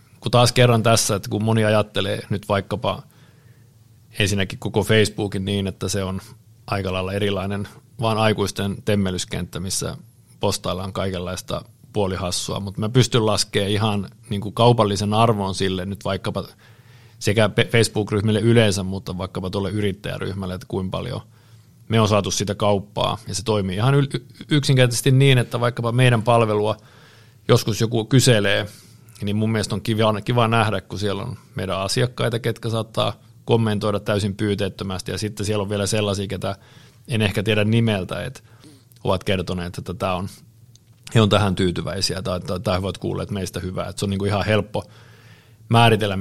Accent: native